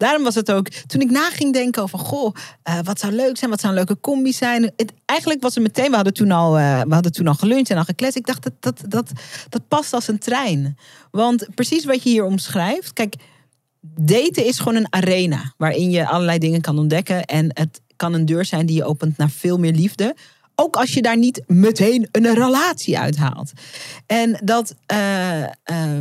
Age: 40-59